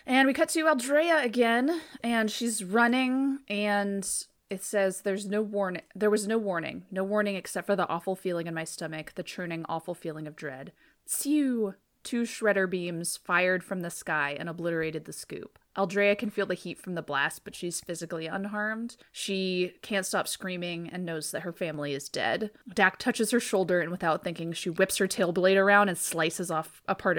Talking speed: 195 wpm